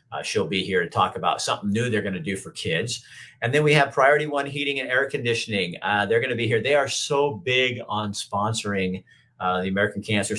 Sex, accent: male, American